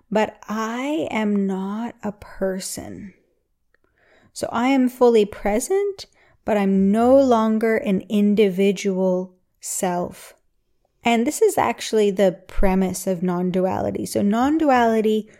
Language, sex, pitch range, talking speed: English, female, 195-235 Hz, 110 wpm